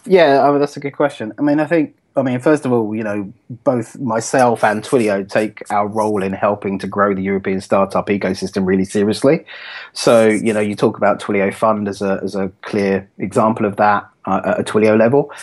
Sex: male